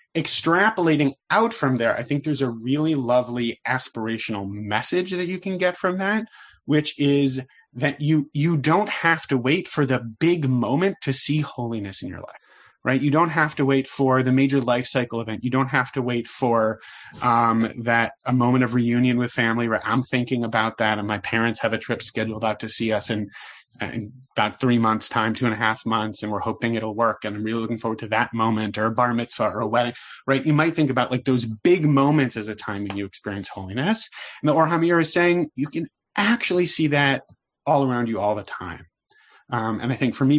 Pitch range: 110-145 Hz